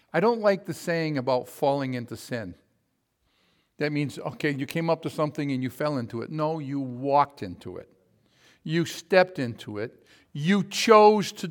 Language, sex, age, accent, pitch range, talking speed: English, male, 50-69, American, 115-155 Hz, 175 wpm